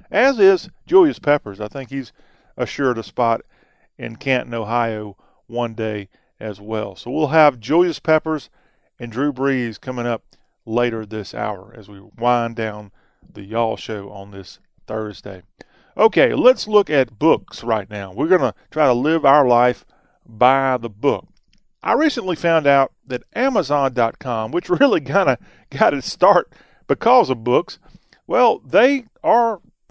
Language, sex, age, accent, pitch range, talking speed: English, male, 40-59, American, 115-155 Hz, 155 wpm